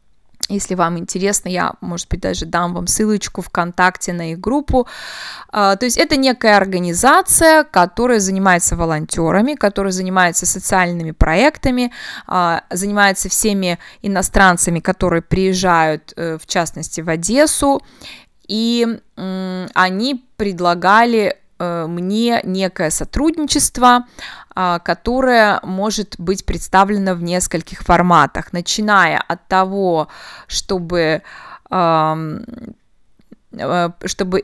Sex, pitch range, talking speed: female, 175-215 Hz, 95 wpm